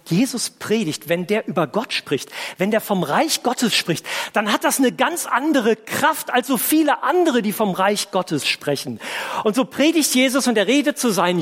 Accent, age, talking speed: German, 40-59, 200 wpm